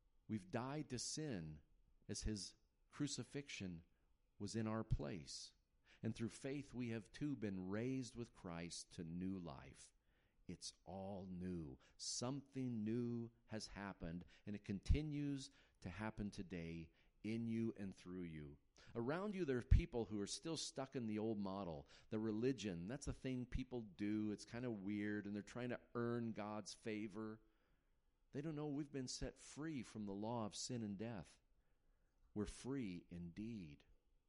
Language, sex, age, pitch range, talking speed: English, male, 40-59, 85-120 Hz, 160 wpm